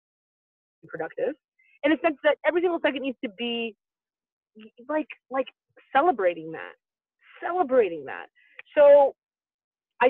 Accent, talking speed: American, 120 wpm